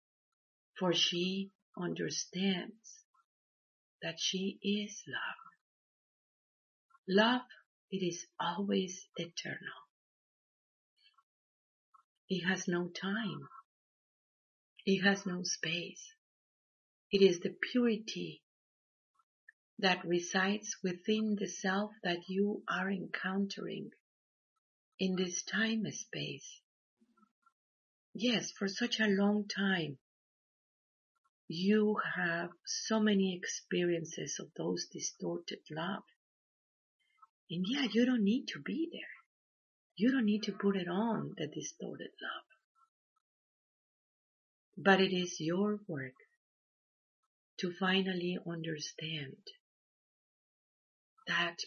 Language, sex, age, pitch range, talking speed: English, female, 50-69, 180-230 Hz, 95 wpm